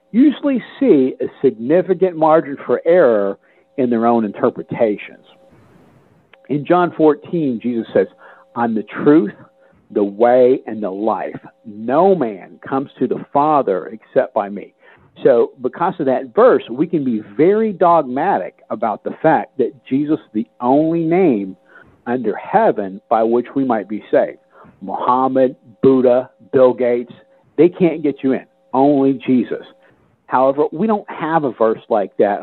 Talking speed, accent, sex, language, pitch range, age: 145 wpm, American, male, English, 115-155 Hz, 50-69